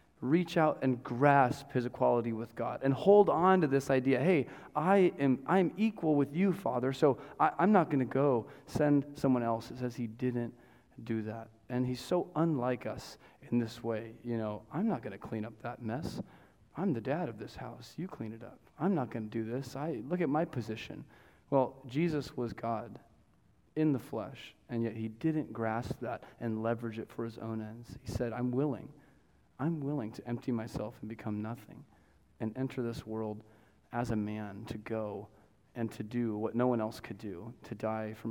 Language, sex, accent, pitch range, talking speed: English, male, American, 110-135 Hz, 205 wpm